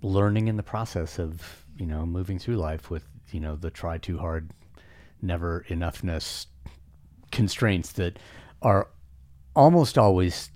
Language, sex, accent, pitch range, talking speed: English, male, American, 80-110 Hz, 135 wpm